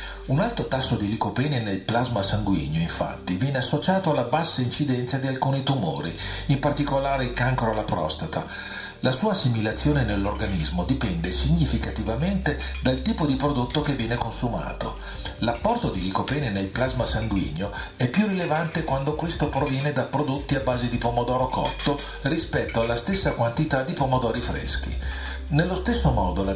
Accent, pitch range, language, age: native, 105-145 Hz, Italian, 50-69